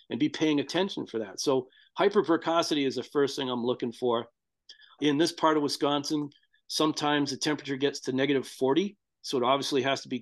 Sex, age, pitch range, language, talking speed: male, 40-59, 130-160 Hz, English, 195 wpm